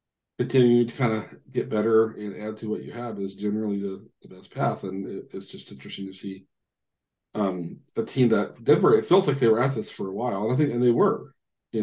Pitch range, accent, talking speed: 100-120 Hz, American, 240 wpm